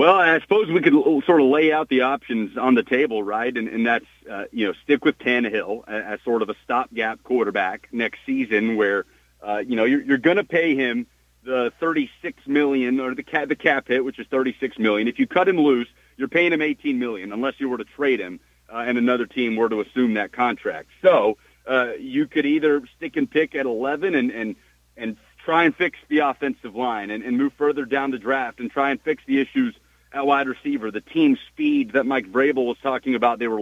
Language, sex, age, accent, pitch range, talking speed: English, male, 40-59, American, 125-160 Hz, 225 wpm